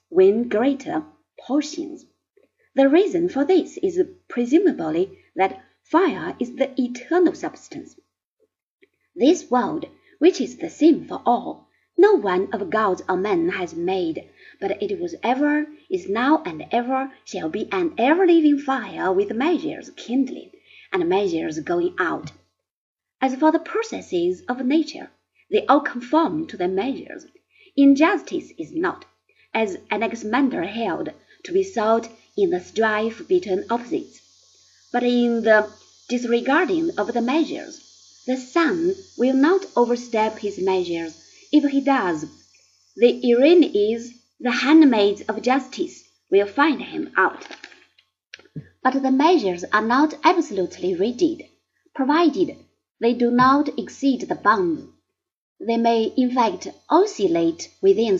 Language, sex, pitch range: Chinese, female, 245-345 Hz